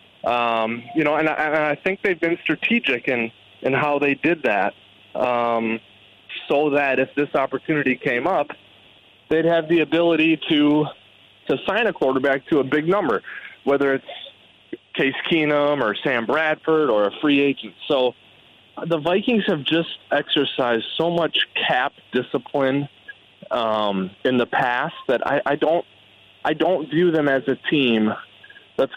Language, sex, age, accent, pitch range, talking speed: English, male, 20-39, American, 115-150 Hz, 155 wpm